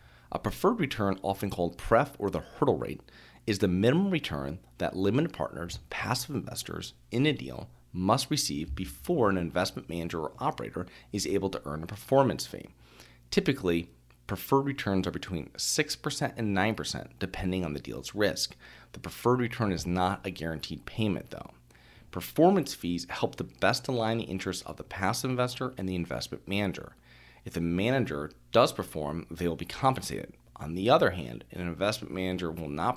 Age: 40-59